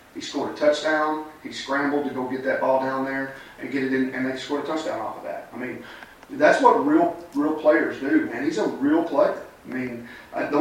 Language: English